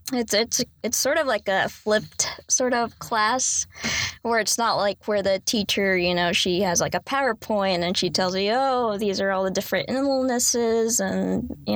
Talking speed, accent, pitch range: 195 wpm, American, 195-230 Hz